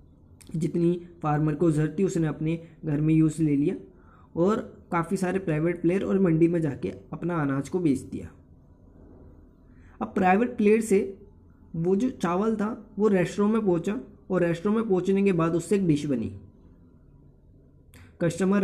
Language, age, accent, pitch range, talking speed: Hindi, 20-39, native, 150-195 Hz, 155 wpm